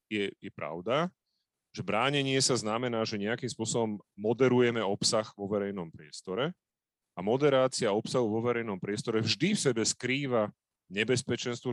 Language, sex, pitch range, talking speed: Slovak, male, 110-135 Hz, 135 wpm